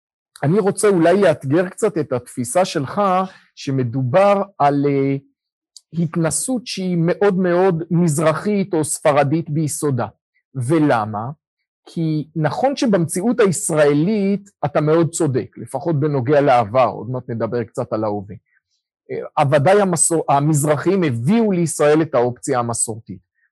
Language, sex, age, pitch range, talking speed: Hebrew, male, 50-69, 135-185 Hz, 110 wpm